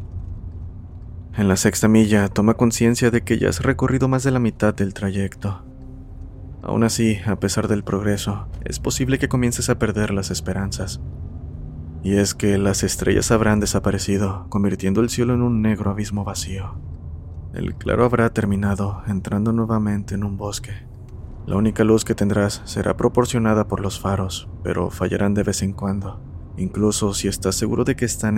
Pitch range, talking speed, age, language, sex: 95-110 Hz, 165 wpm, 20-39, Spanish, male